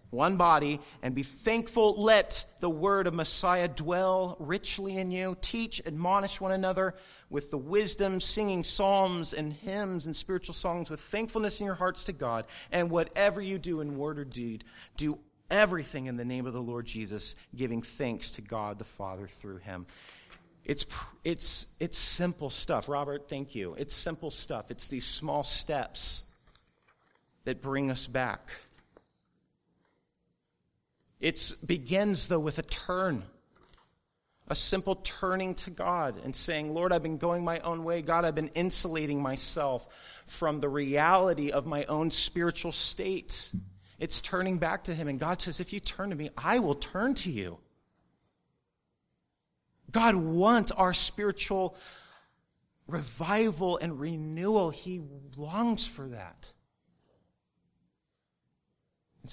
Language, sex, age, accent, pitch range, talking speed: English, male, 40-59, American, 140-185 Hz, 145 wpm